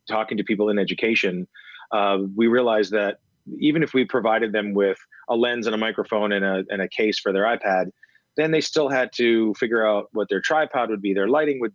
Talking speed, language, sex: 220 wpm, English, male